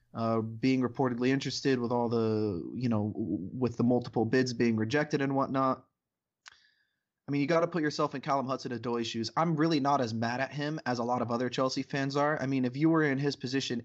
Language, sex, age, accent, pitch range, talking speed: English, male, 20-39, American, 120-140 Hz, 220 wpm